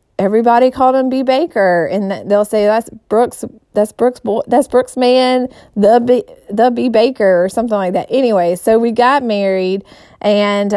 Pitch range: 200-255 Hz